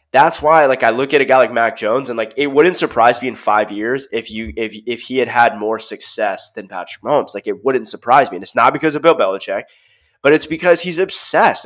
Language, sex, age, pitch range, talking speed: English, male, 20-39, 125-190 Hz, 250 wpm